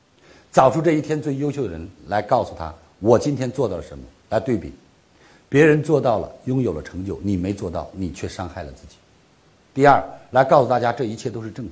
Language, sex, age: Chinese, male, 50-69